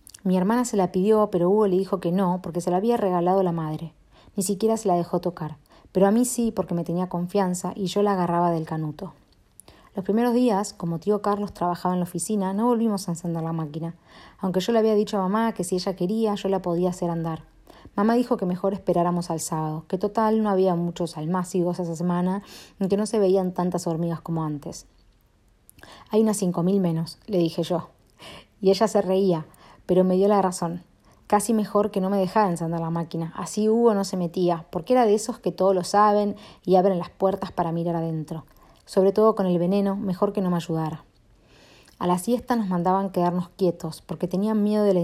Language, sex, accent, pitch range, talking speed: Spanish, female, Argentinian, 170-200 Hz, 215 wpm